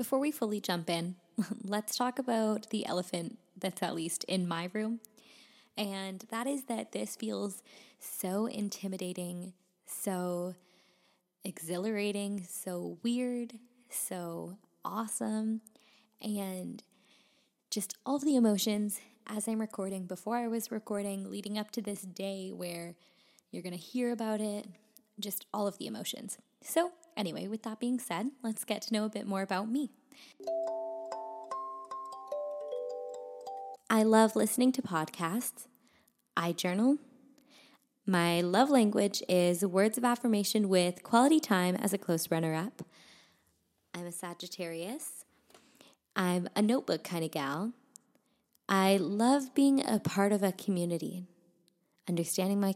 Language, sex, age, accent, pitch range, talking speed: English, female, 10-29, American, 180-235 Hz, 130 wpm